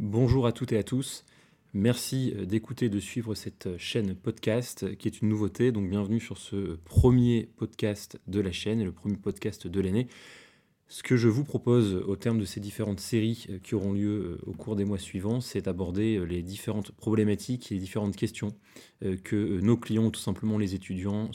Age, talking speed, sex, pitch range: 20-39, 190 wpm, male, 95-110 Hz